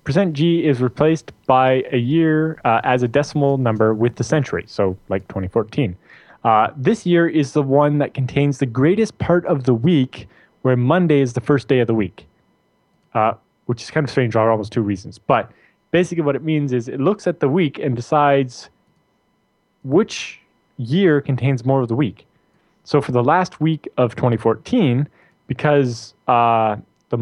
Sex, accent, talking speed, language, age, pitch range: male, American, 180 wpm, English, 20-39, 120-150 Hz